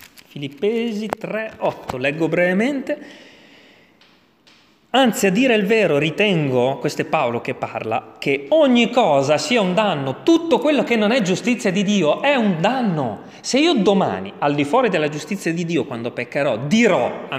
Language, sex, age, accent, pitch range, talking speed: Italian, male, 30-49, native, 165-265 Hz, 160 wpm